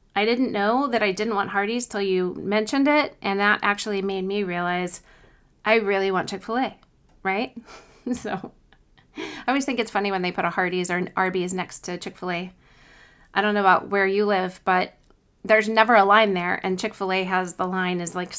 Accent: American